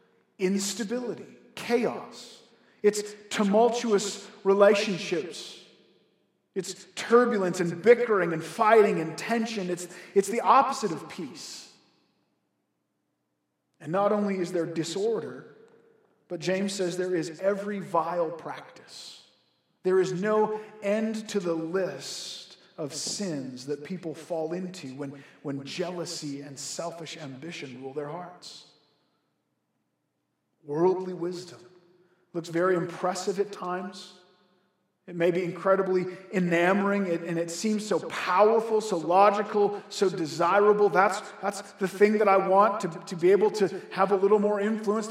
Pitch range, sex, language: 170-210 Hz, male, English